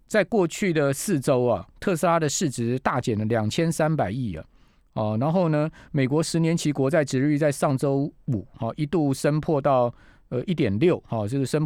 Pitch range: 120-155 Hz